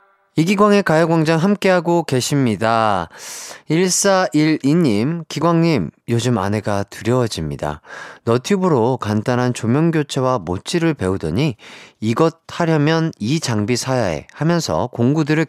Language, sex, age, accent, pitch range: Korean, male, 30-49, native, 115-190 Hz